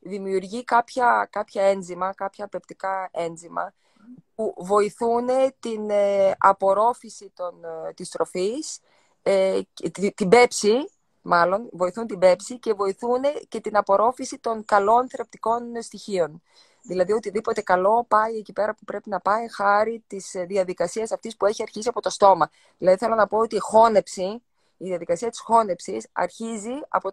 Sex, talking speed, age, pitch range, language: female, 135 wpm, 20-39, 190-240 Hz, Greek